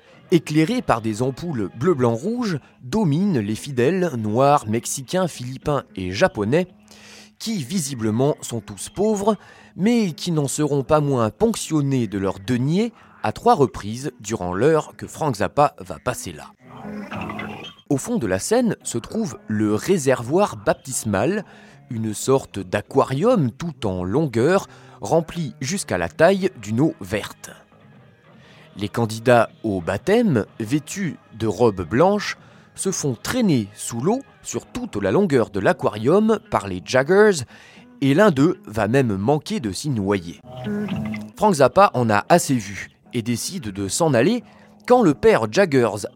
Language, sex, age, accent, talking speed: French, male, 20-39, French, 140 wpm